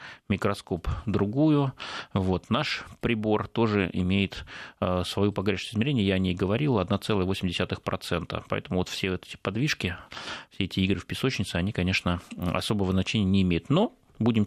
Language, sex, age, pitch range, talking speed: Russian, male, 30-49, 95-120 Hz, 145 wpm